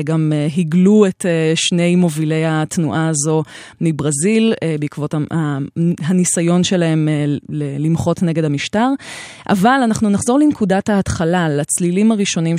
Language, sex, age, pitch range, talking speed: Hebrew, female, 20-39, 155-195 Hz, 100 wpm